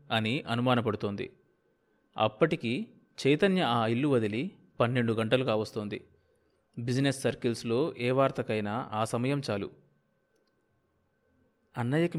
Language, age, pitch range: Telugu, 30-49, 110-150 Hz